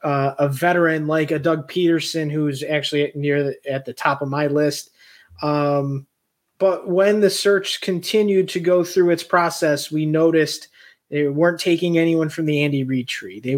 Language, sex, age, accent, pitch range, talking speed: English, male, 20-39, American, 145-170 Hz, 170 wpm